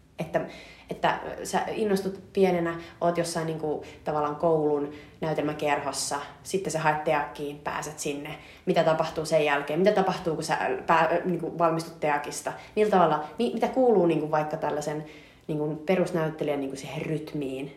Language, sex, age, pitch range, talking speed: Finnish, female, 30-49, 150-170 Hz, 140 wpm